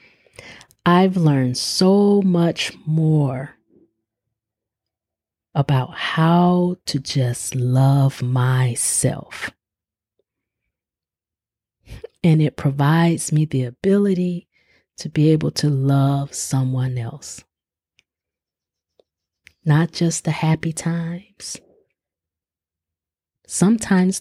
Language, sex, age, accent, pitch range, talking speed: English, female, 30-49, American, 110-170 Hz, 75 wpm